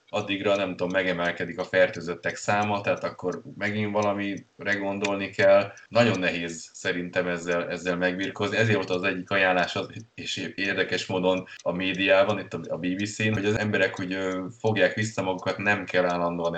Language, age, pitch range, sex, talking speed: Hungarian, 20-39, 90-100 Hz, male, 150 wpm